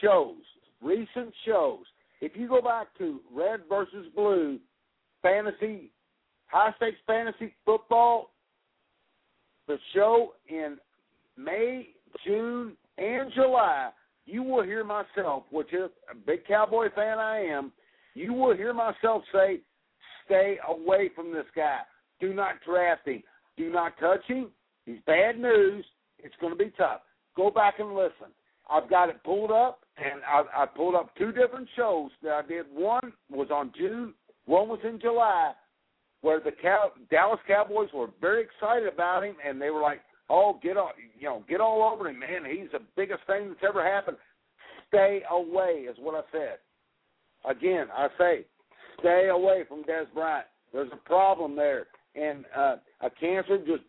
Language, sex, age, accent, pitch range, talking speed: English, male, 60-79, American, 170-235 Hz, 160 wpm